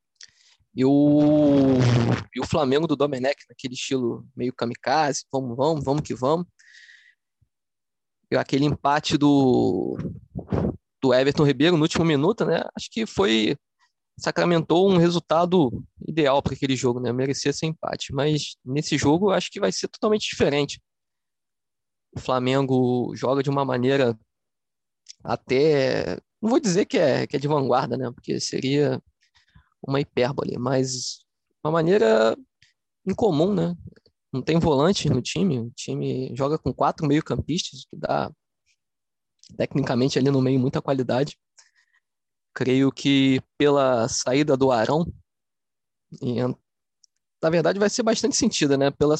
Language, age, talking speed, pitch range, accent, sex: Portuguese, 20-39, 135 wpm, 130-160 Hz, Brazilian, male